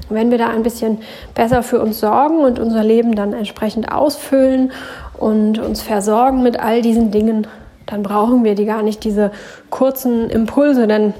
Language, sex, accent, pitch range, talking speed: German, female, German, 210-245 Hz, 170 wpm